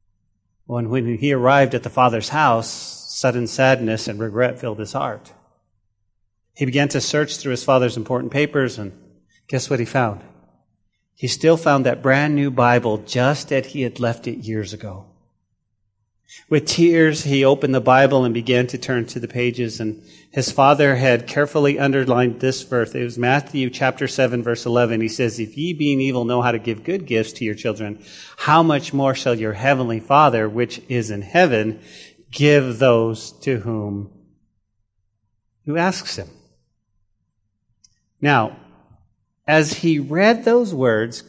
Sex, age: male, 40-59